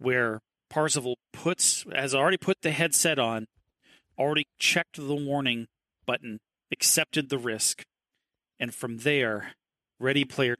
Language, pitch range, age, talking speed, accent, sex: English, 125-155 Hz, 40-59, 120 wpm, American, male